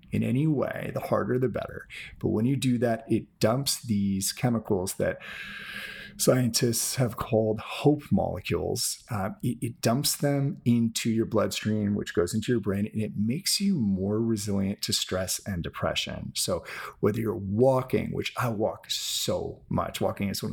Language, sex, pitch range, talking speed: English, male, 105-135 Hz, 165 wpm